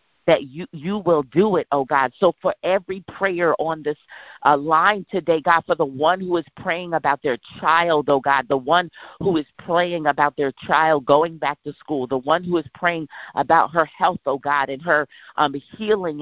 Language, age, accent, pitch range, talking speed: English, 50-69, American, 155-185 Hz, 205 wpm